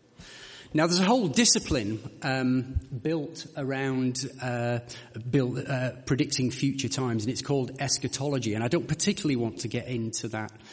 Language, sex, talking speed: English, male, 170 wpm